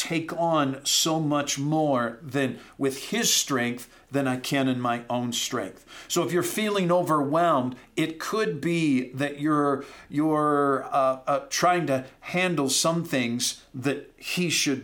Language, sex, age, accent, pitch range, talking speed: English, male, 50-69, American, 130-165 Hz, 150 wpm